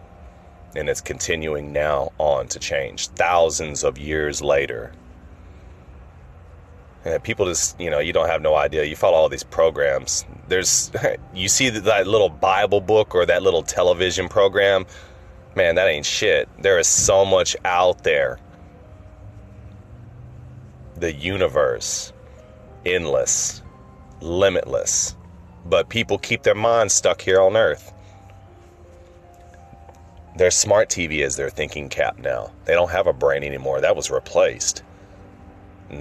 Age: 30-49